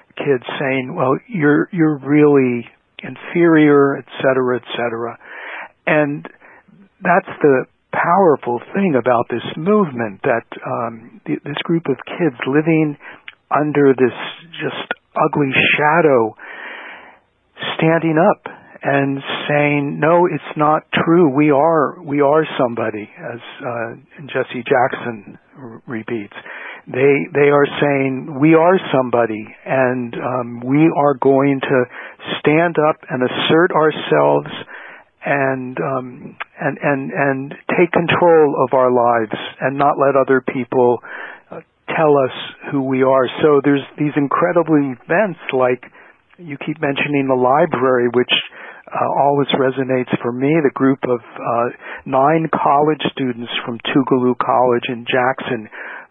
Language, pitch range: English, 125-155 Hz